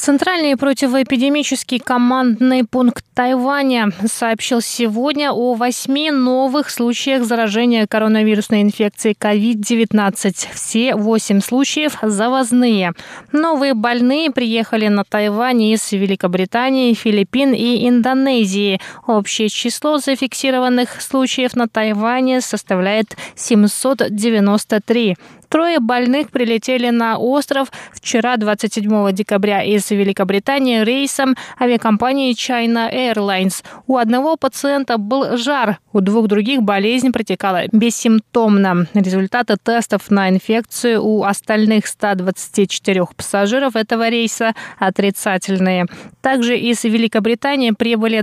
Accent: native